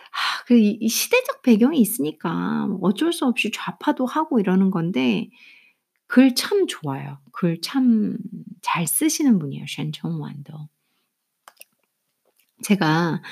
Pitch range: 185-265 Hz